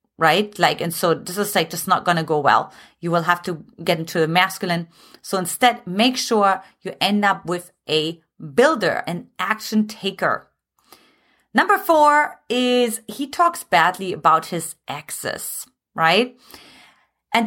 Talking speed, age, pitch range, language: 155 wpm, 30-49, 190-255 Hz, English